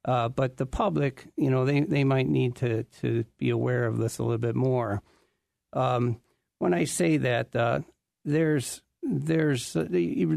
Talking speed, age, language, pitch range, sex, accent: 170 wpm, 50-69, English, 120-140 Hz, male, American